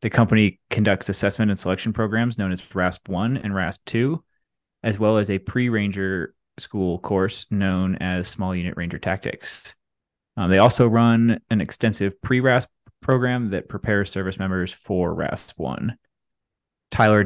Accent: American